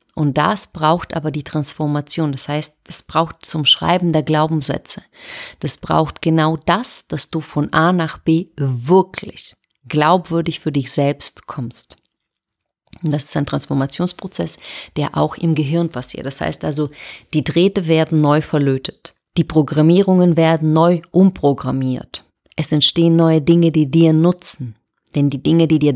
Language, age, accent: German, 30-49, German